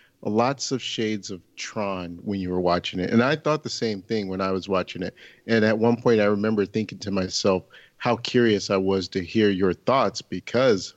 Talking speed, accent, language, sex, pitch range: 215 wpm, American, English, male, 95-120 Hz